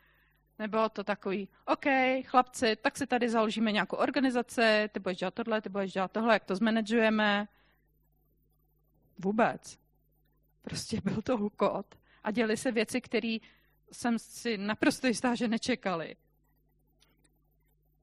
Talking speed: 125 wpm